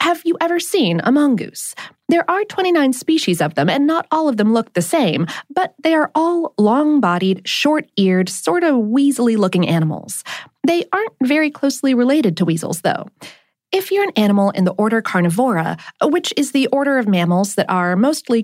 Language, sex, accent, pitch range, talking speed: English, female, American, 185-300 Hz, 180 wpm